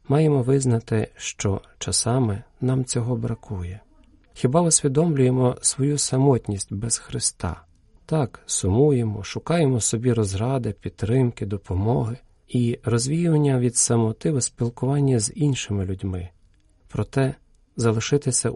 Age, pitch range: 40-59, 105-130 Hz